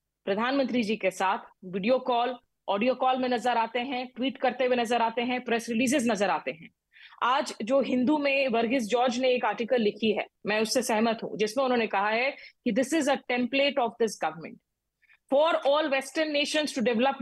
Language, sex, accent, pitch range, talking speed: Hindi, female, native, 230-280 Hz, 195 wpm